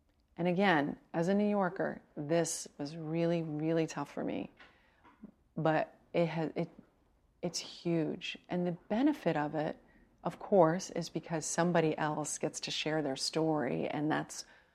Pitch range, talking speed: 155-185 Hz, 150 wpm